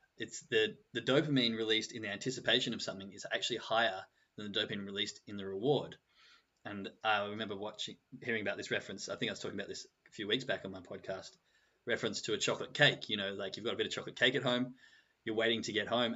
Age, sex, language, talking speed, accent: 20-39, male, English, 240 wpm, Australian